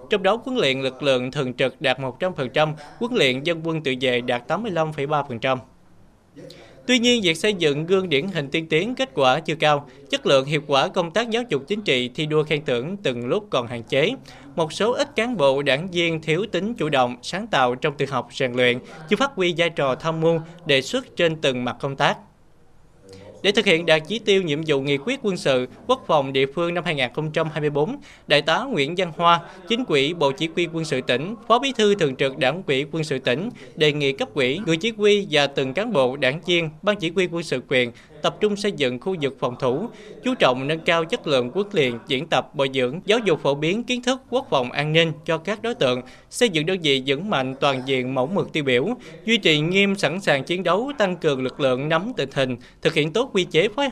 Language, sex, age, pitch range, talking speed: Vietnamese, male, 20-39, 135-195 Hz, 235 wpm